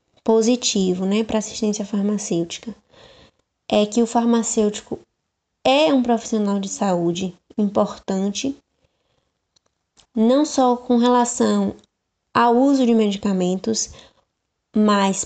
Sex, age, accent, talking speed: female, 20-39, Brazilian, 95 wpm